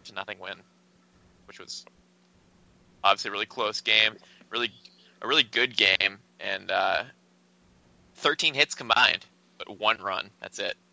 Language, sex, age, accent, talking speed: English, male, 20-39, American, 135 wpm